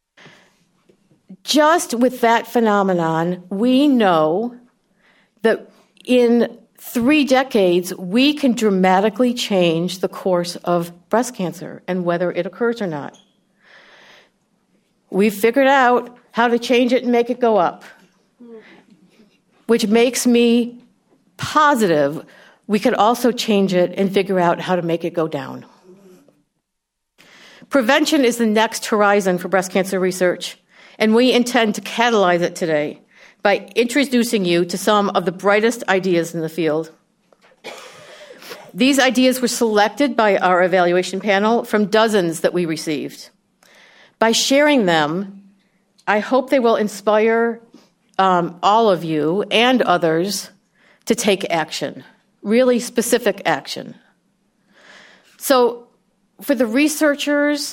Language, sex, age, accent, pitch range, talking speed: English, female, 60-79, American, 185-240 Hz, 125 wpm